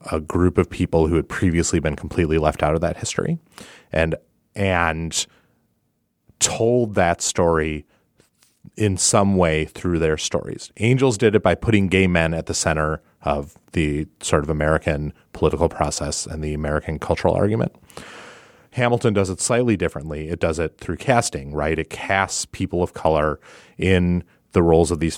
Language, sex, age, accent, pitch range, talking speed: English, male, 30-49, American, 80-100 Hz, 160 wpm